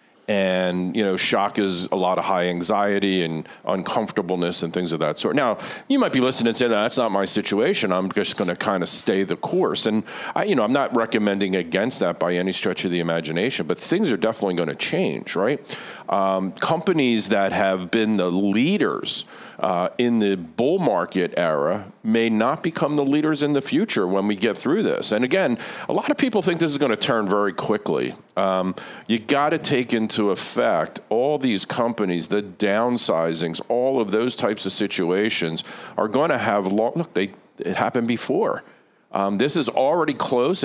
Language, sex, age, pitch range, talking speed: English, male, 50-69, 95-115 Hz, 195 wpm